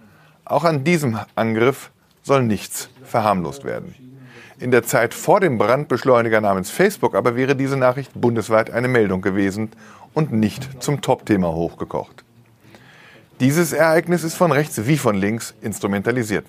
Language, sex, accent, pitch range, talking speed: German, male, German, 110-145 Hz, 140 wpm